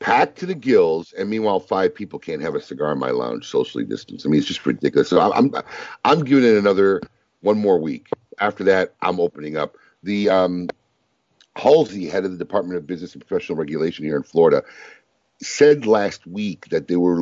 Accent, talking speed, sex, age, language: American, 200 wpm, male, 50-69, English